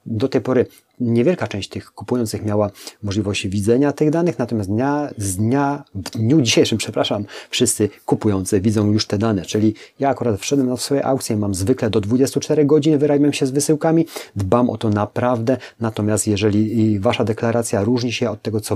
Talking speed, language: 175 wpm, Polish